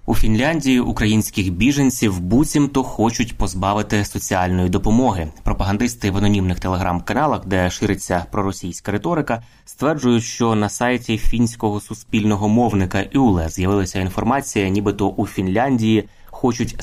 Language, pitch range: Ukrainian, 95-115 Hz